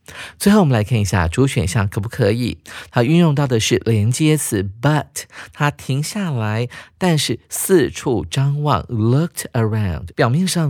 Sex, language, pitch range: male, Chinese, 105-150 Hz